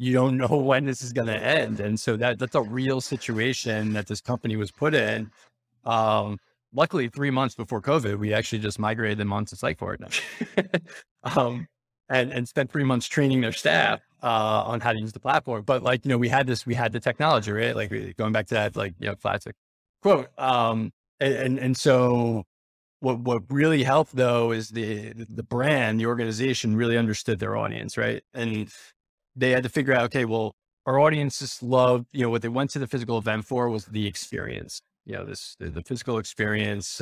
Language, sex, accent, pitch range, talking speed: English, male, American, 110-125 Hz, 200 wpm